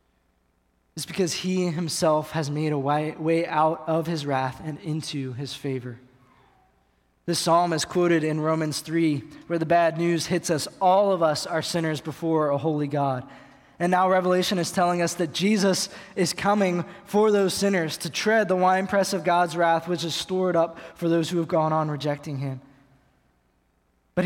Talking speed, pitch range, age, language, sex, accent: 175 wpm, 150-185 Hz, 20-39, English, male, American